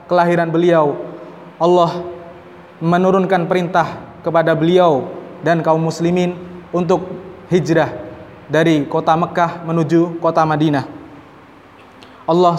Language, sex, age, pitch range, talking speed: Indonesian, male, 20-39, 160-175 Hz, 90 wpm